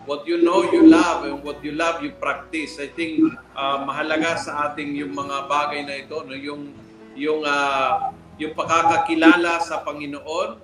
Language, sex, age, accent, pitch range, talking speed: Filipino, male, 50-69, native, 150-210 Hz, 170 wpm